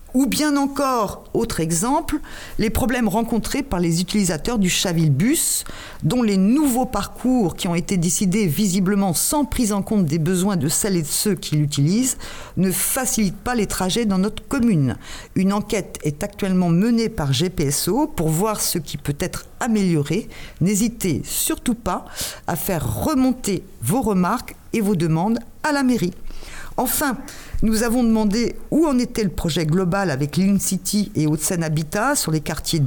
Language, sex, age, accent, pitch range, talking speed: French, female, 50-69, French, 165-230 Hz, 165 wpm